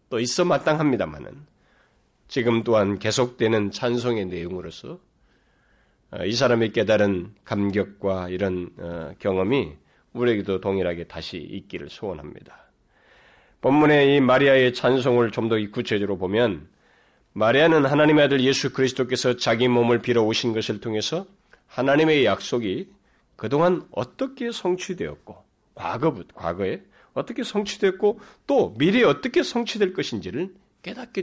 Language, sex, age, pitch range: Korean, male, 40-59, 115-180 Hz